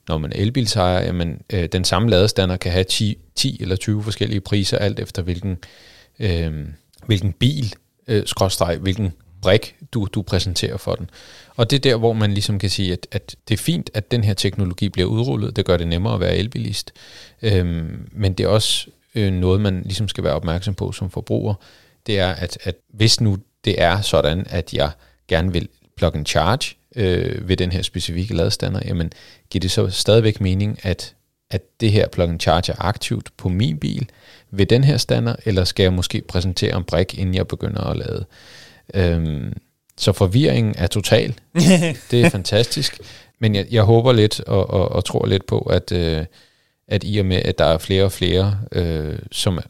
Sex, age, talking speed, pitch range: male, 40-59, 190 wpm, 90-110 Hz